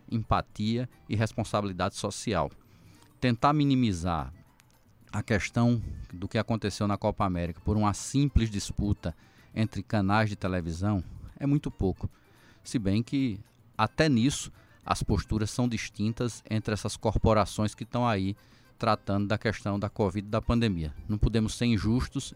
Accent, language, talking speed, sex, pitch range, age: Brazilian, Portuguese, 140 wpm, male, 100-115 Hz, 20-39